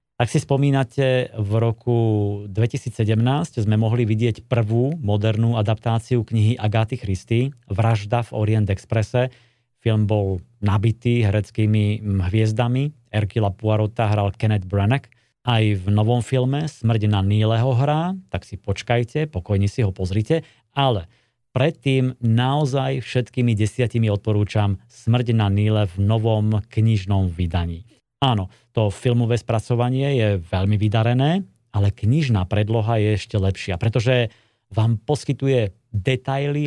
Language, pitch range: Slovak, 105-125 Hz